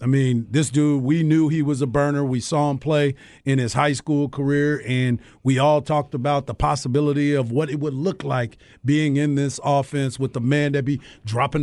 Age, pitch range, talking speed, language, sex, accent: 40-59, 140-165 Hz, 215 wpm, English, male, American